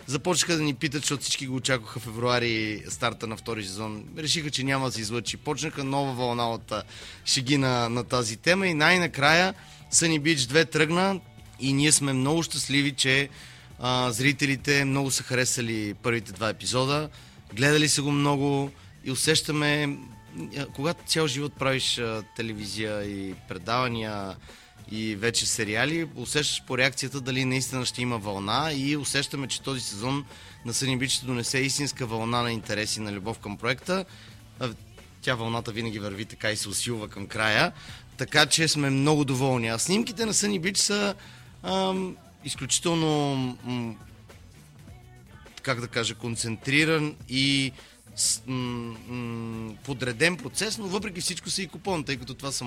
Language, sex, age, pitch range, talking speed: Bulgarian, male, 30-49, 115-145 Hz, 155 wpm